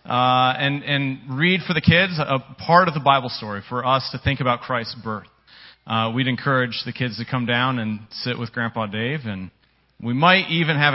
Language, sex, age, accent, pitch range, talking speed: English, male, 30-49, American, 115-145 Hz, 210 wpm